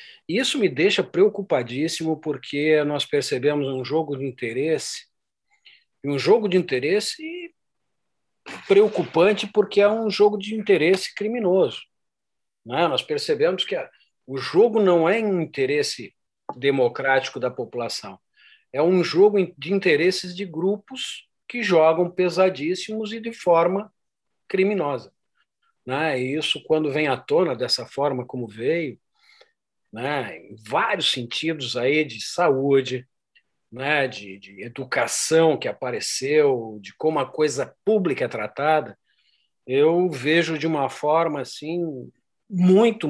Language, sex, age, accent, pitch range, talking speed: Portuguese, male, 50-69, Brazilian, 145-210 Hz, 125 wpm